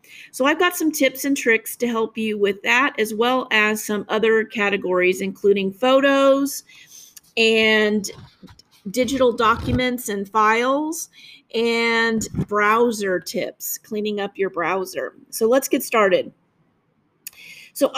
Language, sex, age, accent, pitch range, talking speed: English, female, 40-59, American, 205-265 Hz, 125 wpm